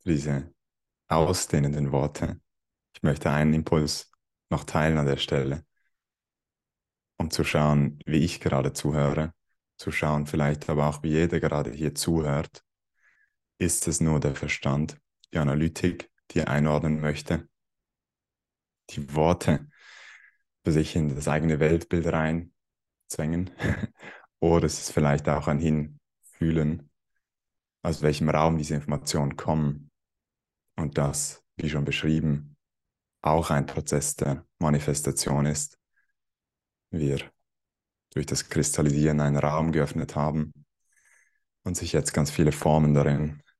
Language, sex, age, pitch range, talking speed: German, male, 20-39, 75-80 Hz, 120 wpm